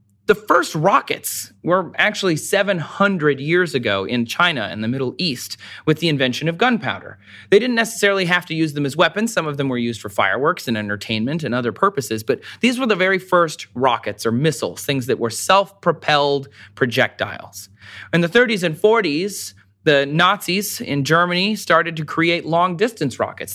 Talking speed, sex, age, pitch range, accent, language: 175 wpm, male, 30-49, 130-185 Hz, American, English